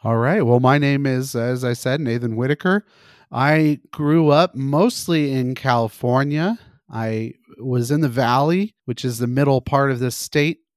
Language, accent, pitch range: English, American, 120-150 Hz